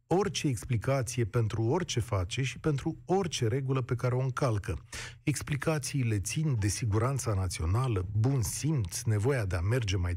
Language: Romanian